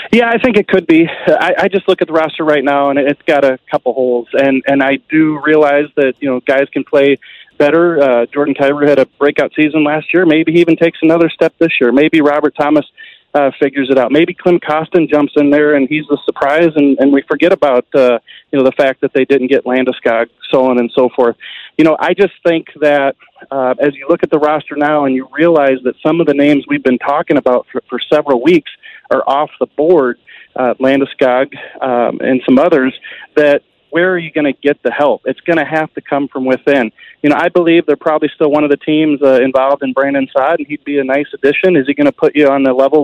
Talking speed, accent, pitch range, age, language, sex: 245 wpm, American, 135-165 Hz, 30-49, English, male